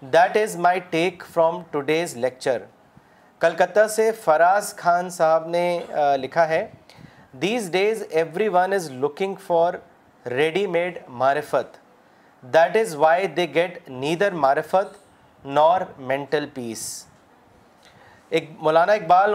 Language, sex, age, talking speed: Urdu, male, 40-59, 115 wpm